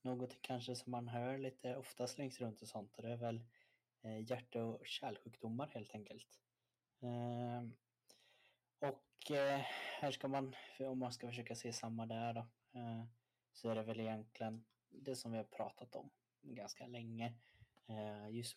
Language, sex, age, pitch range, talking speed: Swedish, male, 20-39, 115-125 Hz, 160 wpm